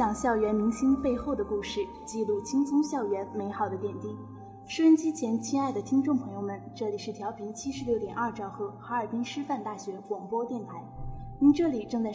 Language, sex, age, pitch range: Chinese, female, 10-29, 205-260 Hz